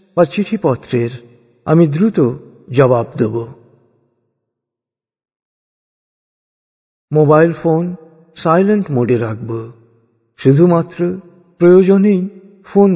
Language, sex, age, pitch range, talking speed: Bengali, male, 60-79, 115-175 Hz, 60 wpm